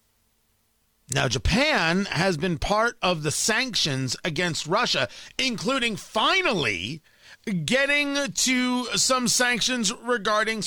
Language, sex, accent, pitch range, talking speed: English, male, American, 155-220 Hz, 95 wpm